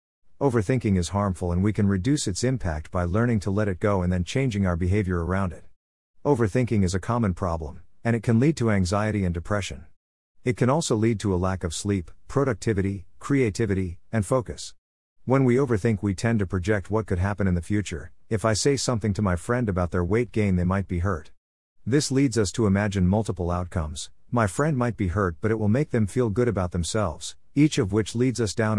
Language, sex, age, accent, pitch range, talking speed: English, male, 50-69, American, 90-115 Hz, 215 wpm